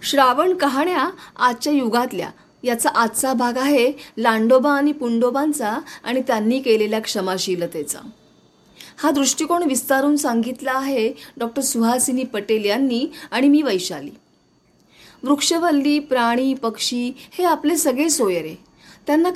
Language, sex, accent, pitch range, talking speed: Marathi, female, native, 235-300 Hz, 110 wpm